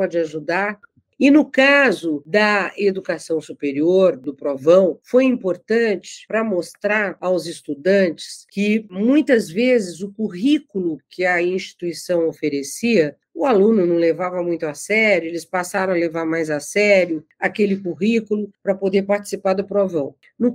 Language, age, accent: Portuguese, 50-69, Brazilian